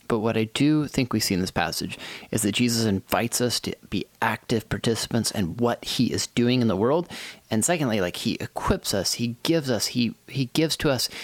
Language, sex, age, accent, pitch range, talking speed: English, male, 30-49, American, 105-135 Hz, 220 wpm